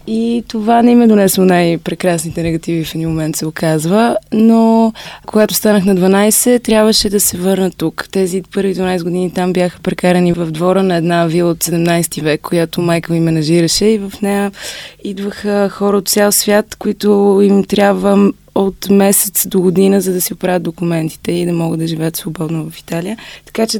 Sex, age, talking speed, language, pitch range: female, 20-39, 180 wpm, Bulgarian, 175-205 Hz